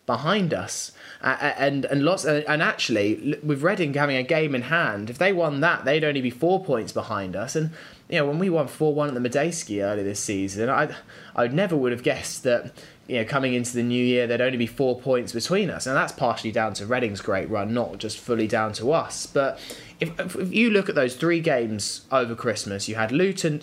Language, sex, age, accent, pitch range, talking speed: English, male, 20-39, British, 110-150 Hz, 225 wpm